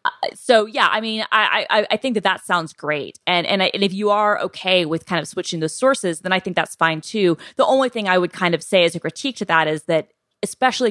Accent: American